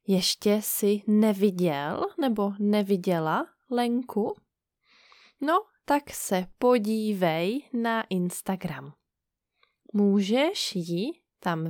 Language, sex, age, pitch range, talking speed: Czech, female, 20-39, 185-250 Hz, 75 wpm